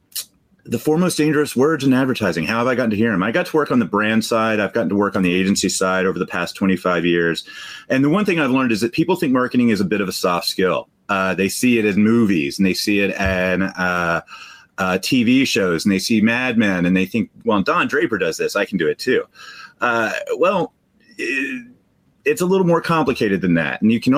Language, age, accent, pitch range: English, 30-49, American, 95-145 Hz